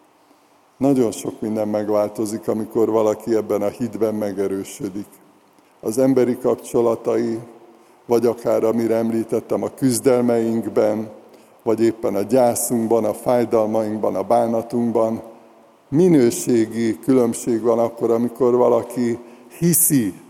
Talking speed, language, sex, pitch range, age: 100 wpm, Hungarian, male, 115-125 Hz, 60-79